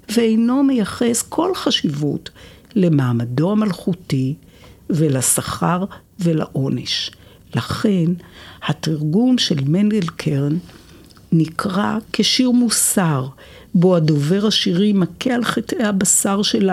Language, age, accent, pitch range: Hebrew, 60-79, native, 150-220 Hz